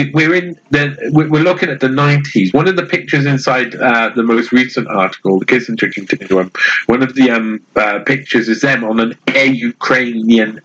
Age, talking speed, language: 50-69, 190 wpm, English